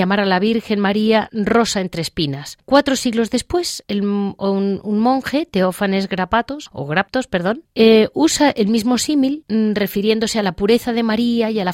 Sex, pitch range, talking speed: female, 195-245 Hz, 175 wpm